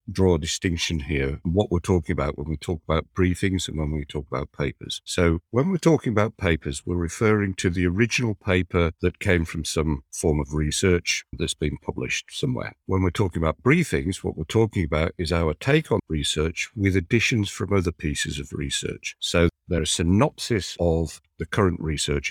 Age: 50-69